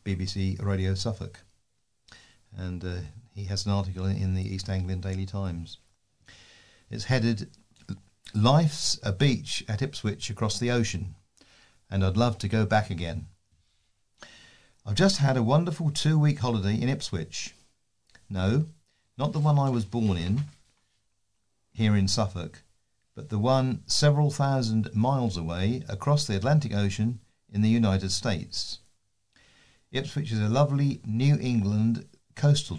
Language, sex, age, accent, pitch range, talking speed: English, male, 50-69, British, 95-125 Hz, 135 wpm